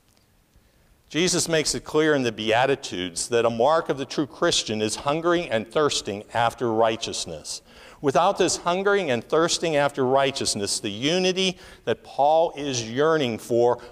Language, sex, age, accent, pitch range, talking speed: English, male, 60-79, American, 110-155 Hz, 145 wpm